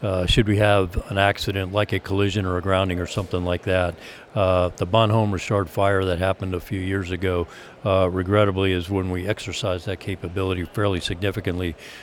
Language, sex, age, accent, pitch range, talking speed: English, male, 50-69, American, 95-110 Hz, 185 wpm